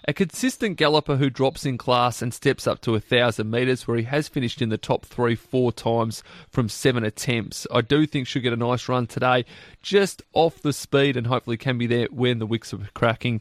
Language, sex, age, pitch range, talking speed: English, male, 30-49, 115-145 Hz, 220 wpm